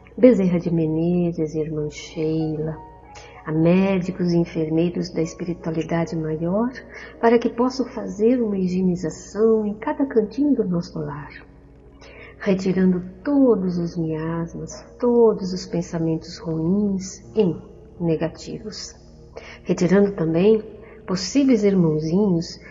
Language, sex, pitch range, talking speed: Portuguese, female, 160-215 Hz, 100 wpm